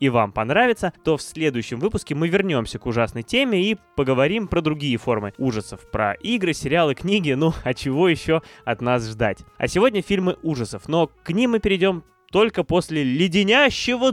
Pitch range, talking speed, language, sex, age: 115-175 Hz, 175 wpm, Russian, male, 20-39